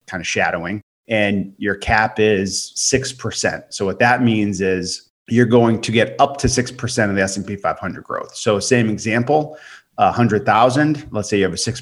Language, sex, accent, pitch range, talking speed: English, male, American, 95-120 Hz, 215 wpm